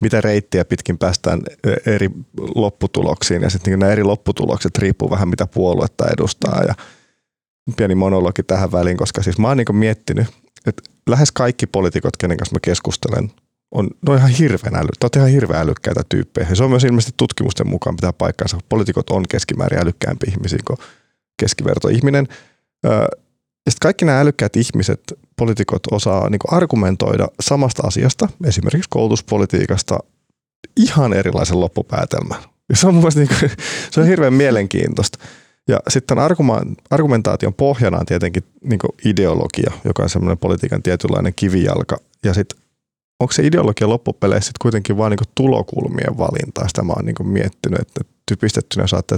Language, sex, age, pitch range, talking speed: English, male, 30-49, 95-130 Hz, 130 wpm